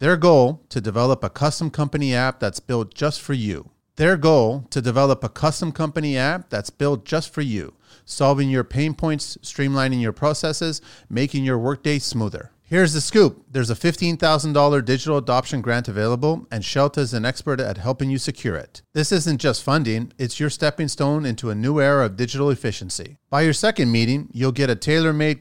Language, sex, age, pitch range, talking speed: English, male, 40-59, 120-155 Hz, 190 wpm